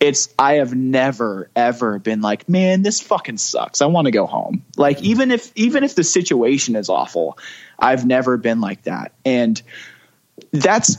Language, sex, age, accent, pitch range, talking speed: English, male, 20-39, American, 115-160 Hz, 175 wpm